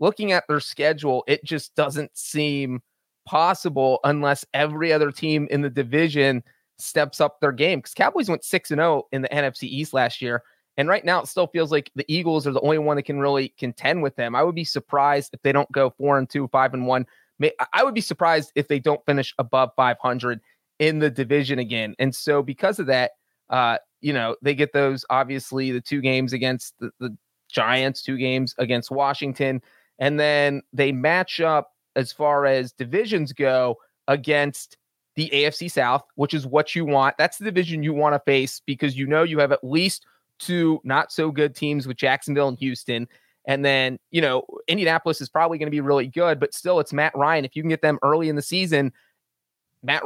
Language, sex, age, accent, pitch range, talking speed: English, male, 30-49, American, 130-150 Hz, 205 wpm